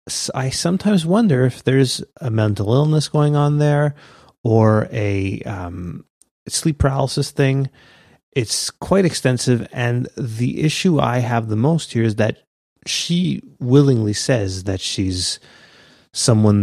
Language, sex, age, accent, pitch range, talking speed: English, male, 30-49, American, 100-135 Hz, 130 wpm